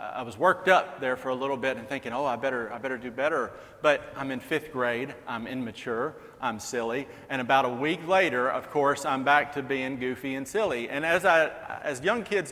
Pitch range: 125-150 Hz